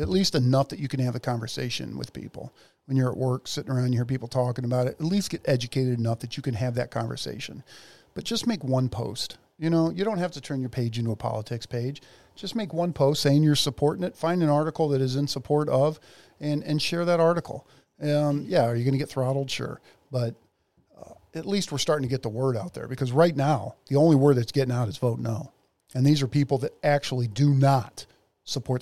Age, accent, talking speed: 40-59, American, 240 wpm